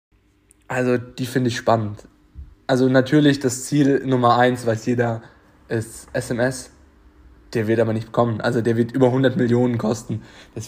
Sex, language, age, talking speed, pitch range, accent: male, German, 20-39, 155 wpm, 120-160 Hz, German